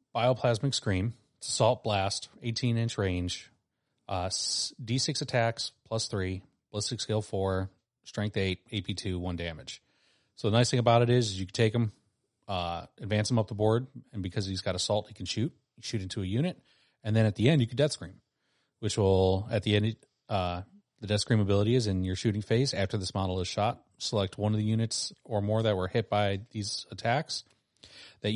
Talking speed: 200 wpm